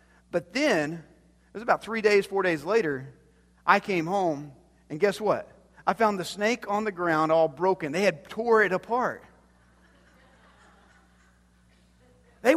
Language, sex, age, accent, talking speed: English, male, 40-59, American, 150 wpm